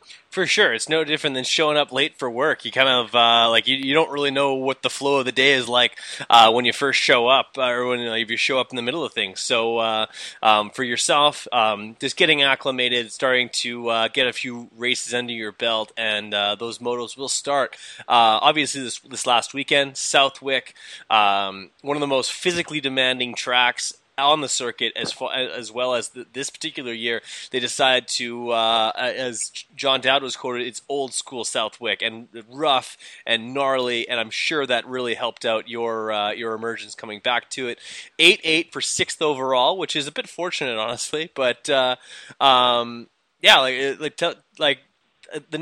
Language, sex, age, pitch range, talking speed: English, male, 20-39, 115-140 Hz, 195 wpm